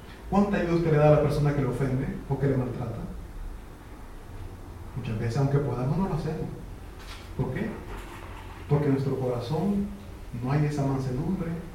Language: Italian